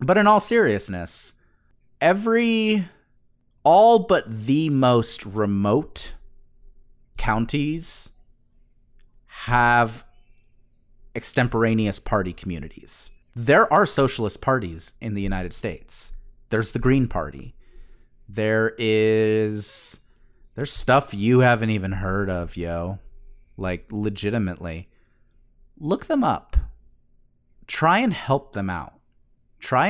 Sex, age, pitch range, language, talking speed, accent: male, 30-49, 95-130 Hz, English, 95 wpm, American